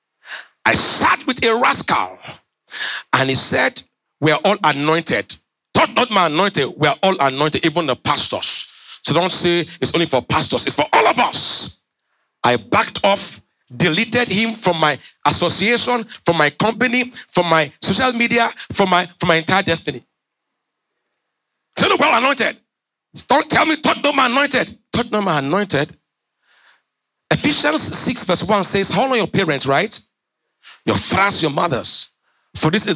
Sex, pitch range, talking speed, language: male, 155-230 Hz, 160 wpm, English